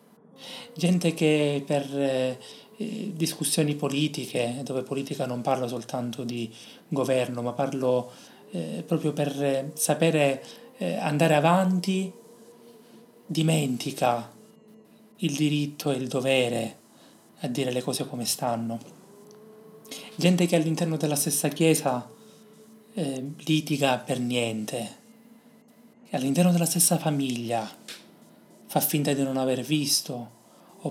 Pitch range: 130-190 Hz